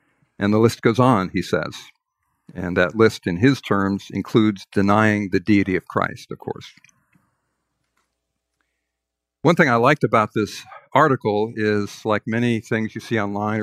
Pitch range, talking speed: 105-135 Hz, 155 wpm